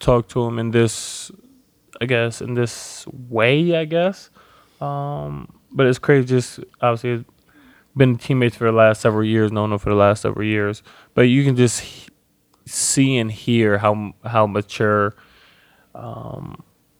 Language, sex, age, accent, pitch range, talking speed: English, male, 20-39, American, 105-120 Hz, 150 wpm